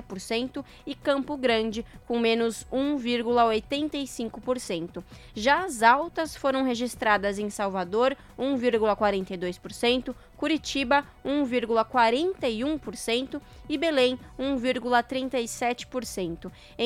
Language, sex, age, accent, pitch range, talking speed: Portuguese, female, 20-39, Brazilian, 225-275 Hz, 70 wpm